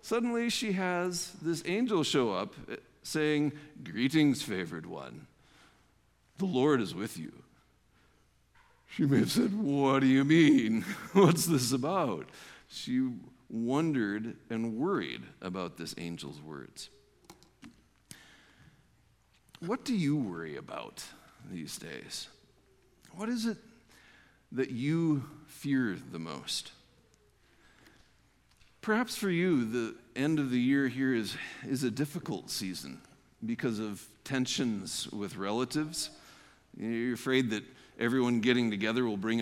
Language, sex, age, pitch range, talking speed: English, male, 50-69, 120-175 Hz, 115 wpm